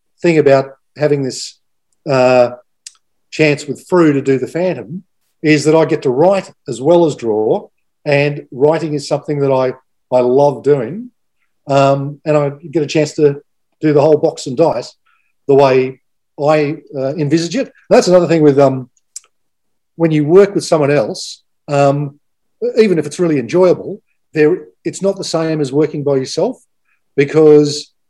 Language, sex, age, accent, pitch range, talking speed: English, male, 50-69, Australian, 140-180 Hz, 165 wpm